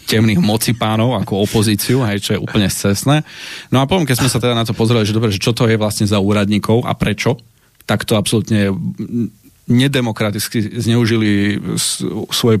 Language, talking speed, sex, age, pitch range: Slovak, 165 wpm, male, 30-49, 100-115 Hz